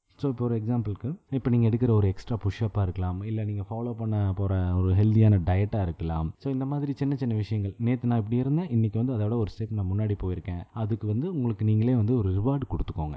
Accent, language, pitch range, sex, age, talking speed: native, Tamil, 100-130 Hz, male, 20-39, 215 wpm